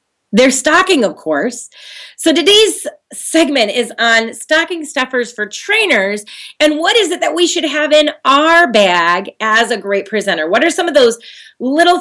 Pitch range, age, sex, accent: 195-280 Hz, 30-49, female, American